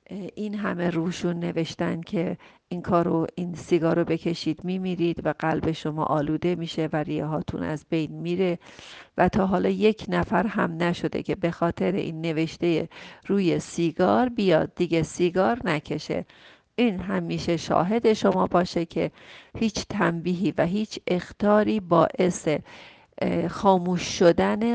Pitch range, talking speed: 160-185 Hz, 130 wpm